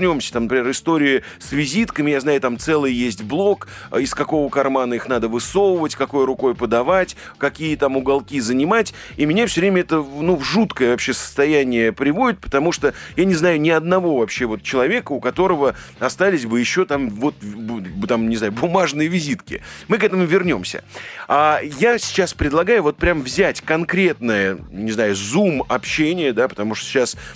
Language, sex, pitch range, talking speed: Russian, male, 120-175 Hz, 170 wpm